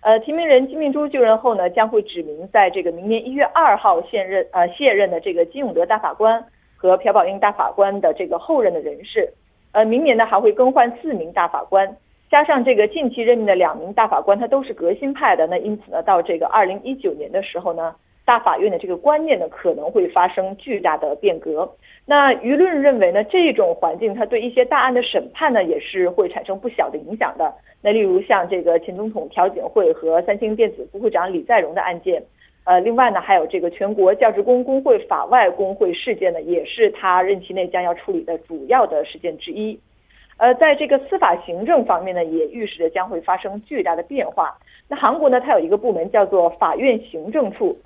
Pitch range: 190-295 Hz